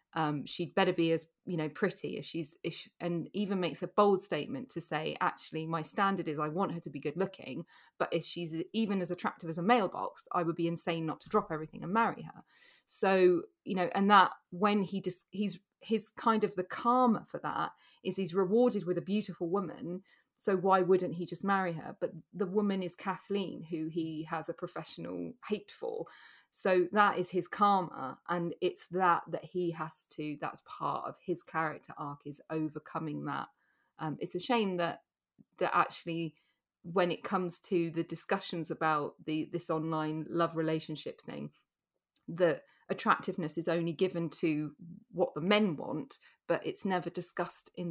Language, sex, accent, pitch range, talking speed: English, female, British, 165-195 Hz, 185 wpm